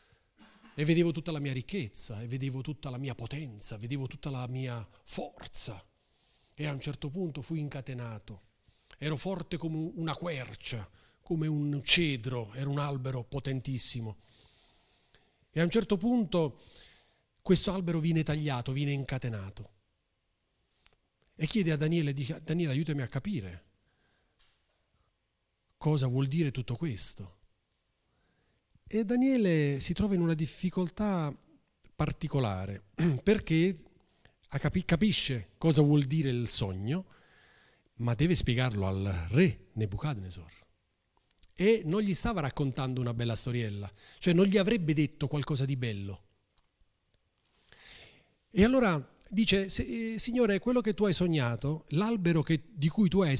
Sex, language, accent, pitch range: male, Italian, native, 115-165 Hz